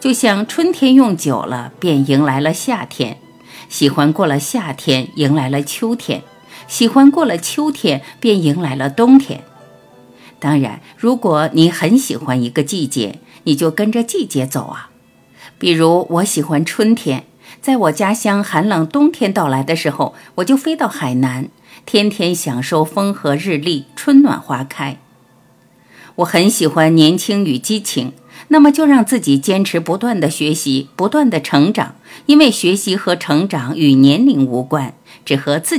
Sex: female